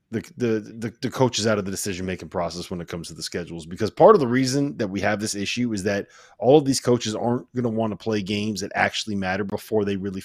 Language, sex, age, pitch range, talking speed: English, male, 30-49, 110-145 Hz, 270 wpm